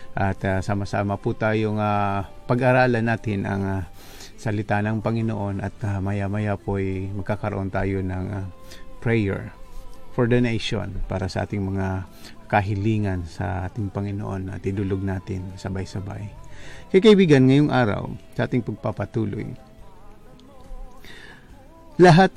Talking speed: 120 wpm